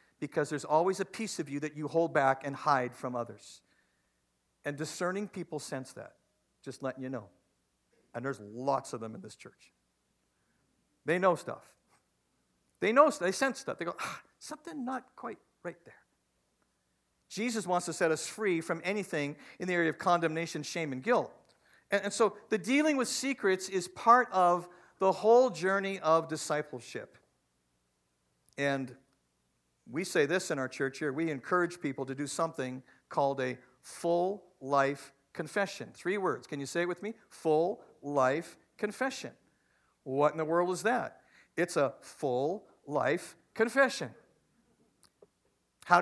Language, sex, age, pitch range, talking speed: English, male, 50-69, 135-195 Hz, 155 wpm